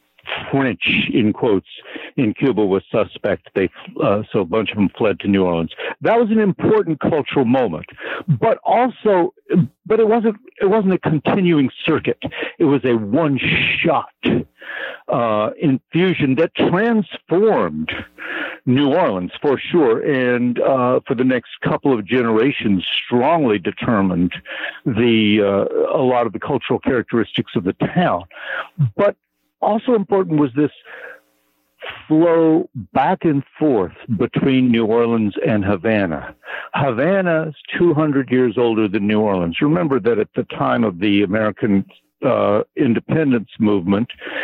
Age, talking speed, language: 60-79, 140 wpm, English